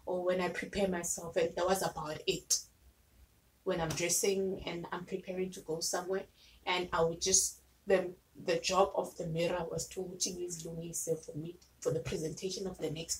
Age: 20-39